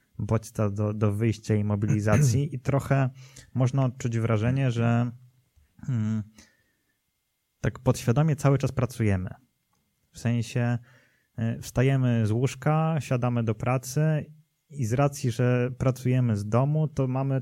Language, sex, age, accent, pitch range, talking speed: Polish, male, 20-39, native, 110-130 Hz, 120 wpm